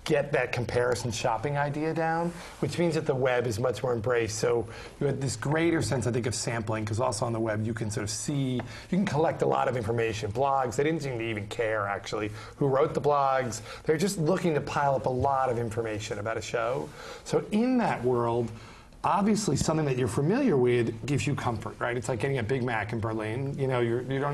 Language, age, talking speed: English, 40-59, 230 wpm